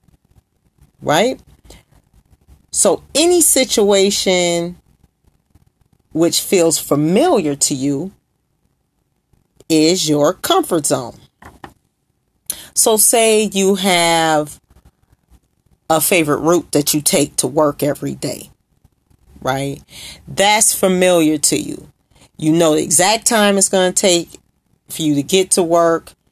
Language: English